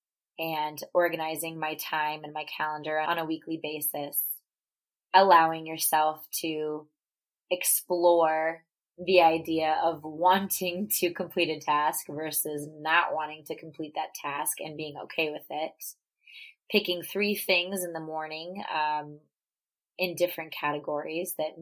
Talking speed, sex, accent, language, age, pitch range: 130 wpm, female, American, English, 20-39, 155-180 Hz